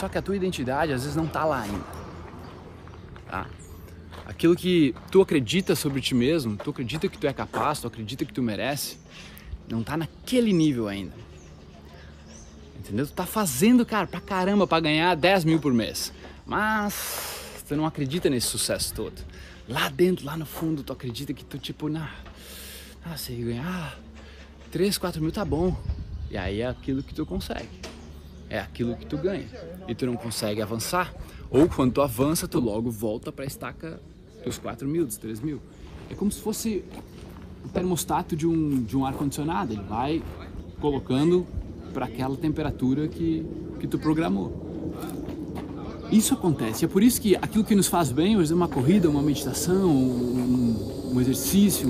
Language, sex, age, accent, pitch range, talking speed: Portuguese, male, 20-39, Brazilian, 105-175 Hz, 170 wpm